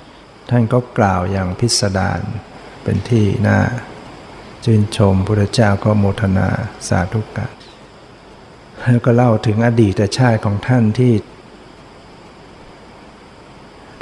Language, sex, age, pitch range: Thai, male, 60-79, 100-115 Hz